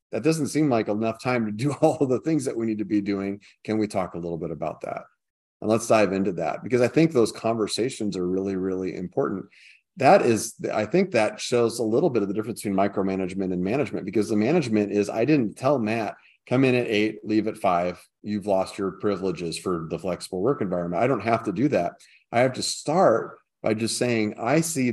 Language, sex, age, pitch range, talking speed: English, male, 30-49, 100-115 Hz, 230 wpm